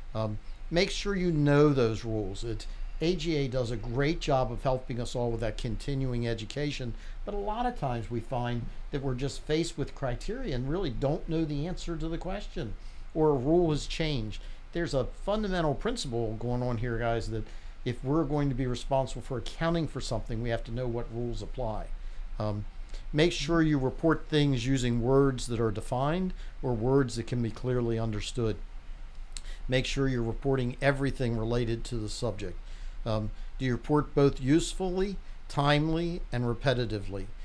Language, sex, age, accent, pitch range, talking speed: English, male, 50-69, American, 115-145 Hz, 175 wpm